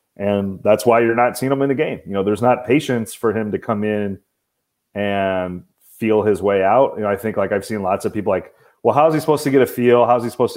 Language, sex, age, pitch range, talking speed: English, male, 30-49, 95-110 Hz, 265 wpm